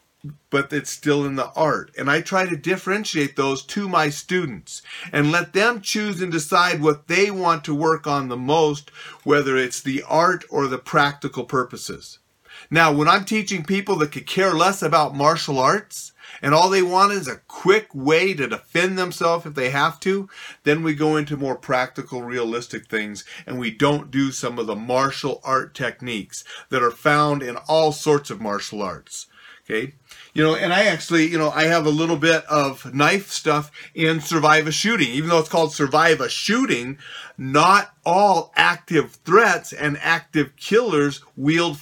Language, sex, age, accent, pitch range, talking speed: English, male, 40-59, American, 140-170 Hz, 180 wpm